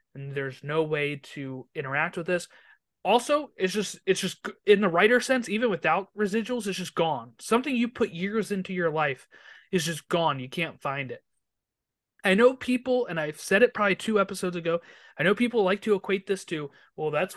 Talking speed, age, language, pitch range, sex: 200 wpm, 30-49, English, 170-240 Hz, male